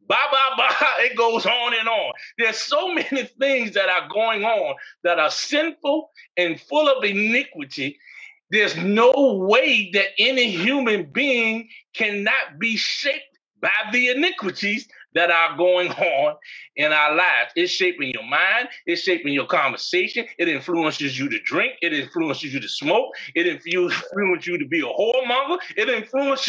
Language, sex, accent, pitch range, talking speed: English, male, American, 190-295 Hz, 160 wpm